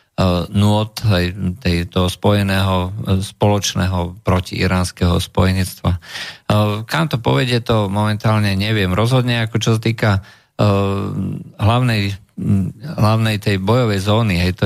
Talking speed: 105 wpm